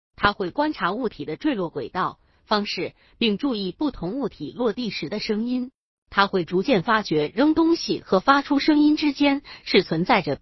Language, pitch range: Chinese, 175-265 Hz